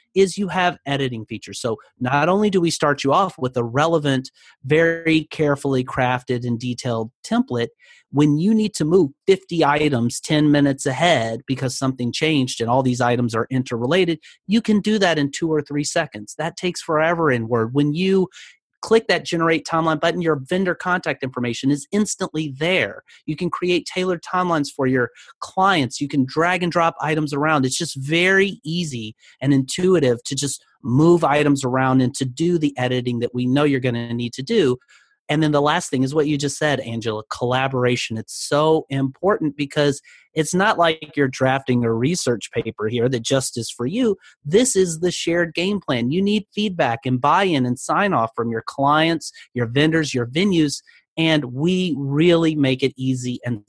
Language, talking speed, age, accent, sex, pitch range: English, 185 wpm, 30-49, American, male, 125-170 Hz